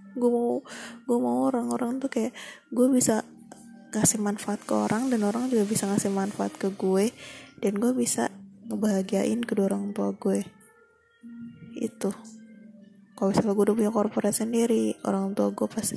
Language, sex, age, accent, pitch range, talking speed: Indonesian, female, 20-39, native, 205-245 Hz, 150 wpm